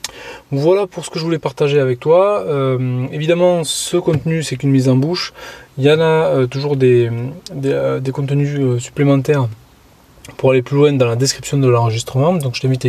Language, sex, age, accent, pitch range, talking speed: French, male, 20-39, French, 125-155 Hz, 200 wpm